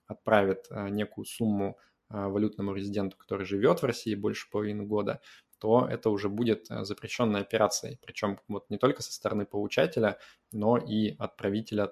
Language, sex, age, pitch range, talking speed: Russian, male, 20-39, 100-110 Hz, 135 wpm